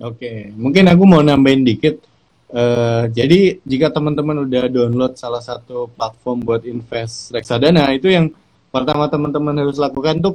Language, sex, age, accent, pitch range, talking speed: Indonesian, male, 20-39, native, 125-160 Hz, 150 wpm